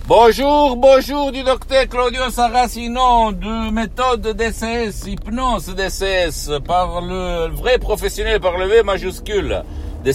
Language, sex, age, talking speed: Italian, male, 60-79, 120 wpm